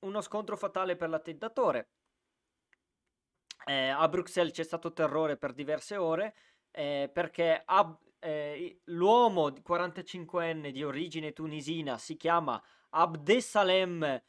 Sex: male